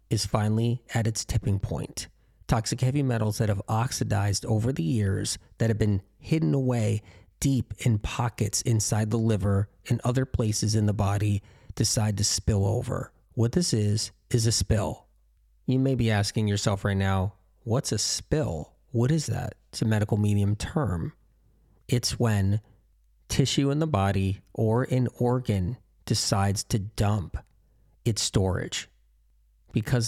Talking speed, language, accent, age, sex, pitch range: 150 wpm, English, American, 30-49, male, 100-120 Hz